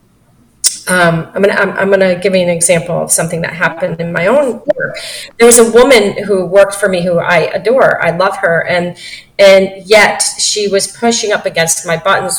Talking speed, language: 205 wpm, English